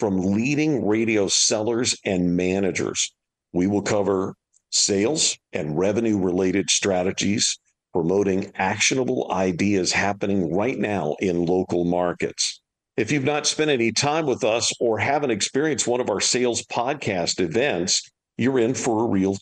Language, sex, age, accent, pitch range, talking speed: English, male, 50-69, American, 95-120 Hz, 140 wpm